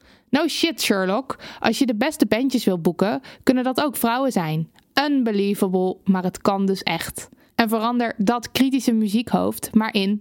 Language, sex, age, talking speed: Dutch, female, 20-39, 165 wpm